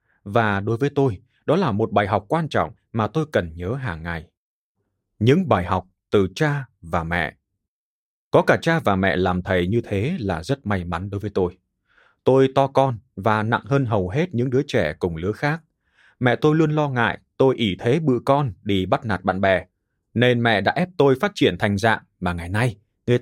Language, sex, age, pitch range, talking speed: Vietnamese, male, 20-39, 100-135 Hz, 210 wpm